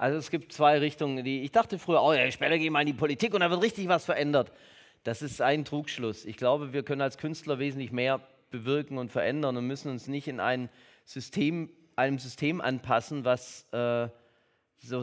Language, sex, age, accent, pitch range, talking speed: German, male, 30-49, German, 120-145 Hz, 205 wpm